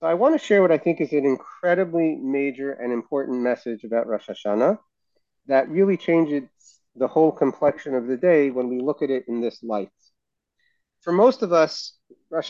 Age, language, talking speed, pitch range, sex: 30-49, English, 190 wpm, 120-160 Hz, male